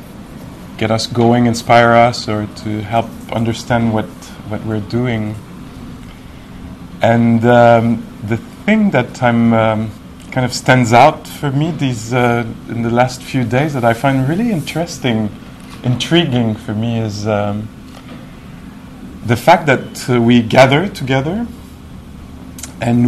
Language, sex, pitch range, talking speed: English, male, 110-130 Hz, 135 wpm